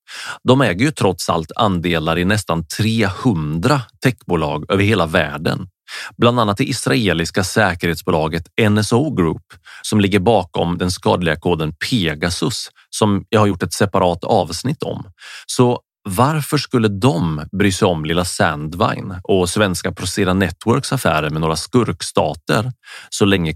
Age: 30-49